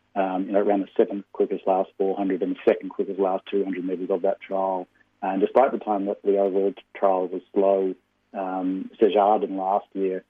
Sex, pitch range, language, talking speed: male, 95-100 Hz, English, 200 wpm